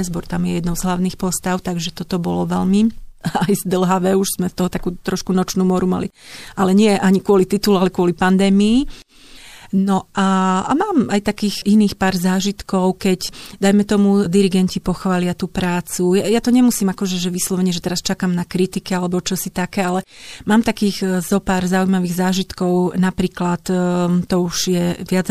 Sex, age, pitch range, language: female, 30-49, 180-200 Hz, Slovak